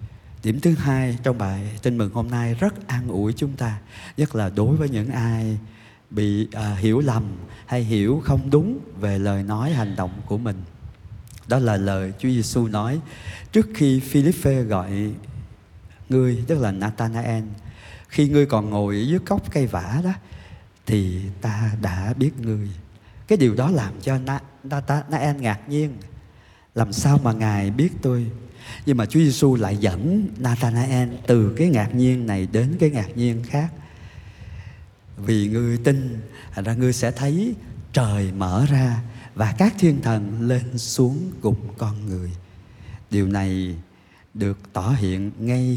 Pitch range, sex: 100-130 Hz, male